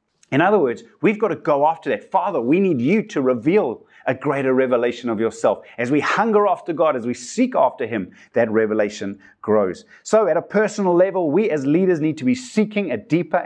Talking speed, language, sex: 210 wpm, English, male